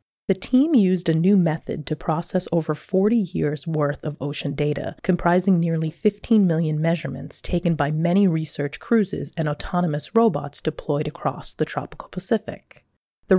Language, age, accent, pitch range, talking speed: English, 30-49, American, 145-185 Hz, 150 wpm